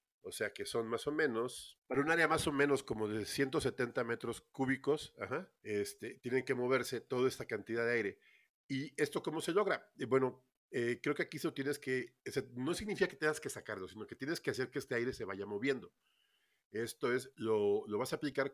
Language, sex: Spanish, male